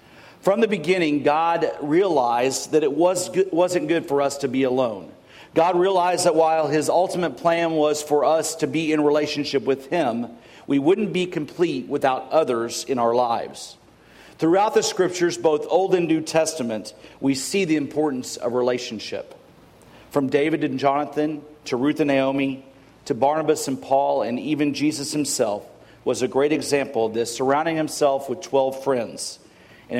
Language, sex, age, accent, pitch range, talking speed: English, male, 40-59, American, 130-155 Hz, 165 wpm